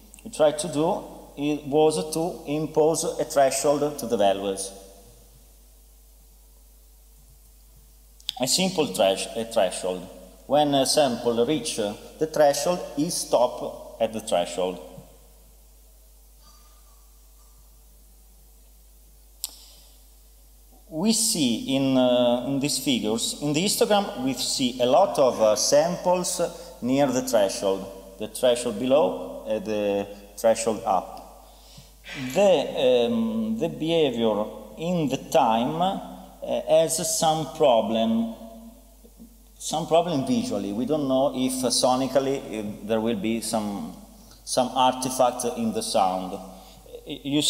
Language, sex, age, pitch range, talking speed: Italian, male, 40-59, 100-160 Hz, 110 wpm